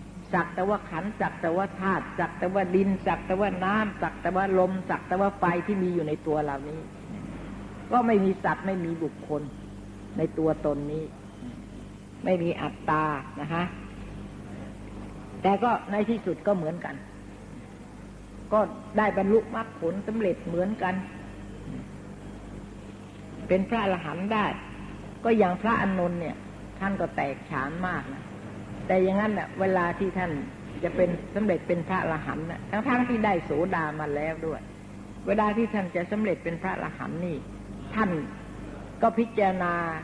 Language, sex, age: Thai, female, 60-79